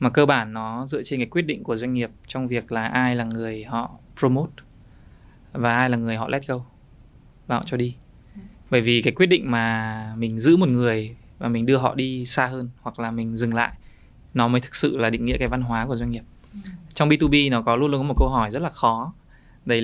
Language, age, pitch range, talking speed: Vietnamese, 20-39, 115-130 Hz, 240 wpm